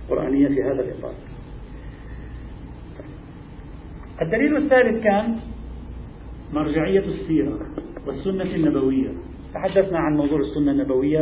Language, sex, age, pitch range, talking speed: Arabic, male, 40-59, 145-175 Hz, 85 wpm